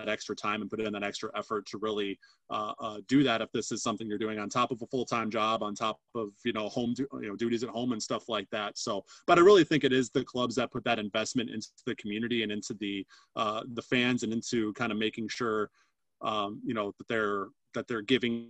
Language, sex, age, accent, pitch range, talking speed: English, male, 30-49, American, 115-145 Hz, 255 wpm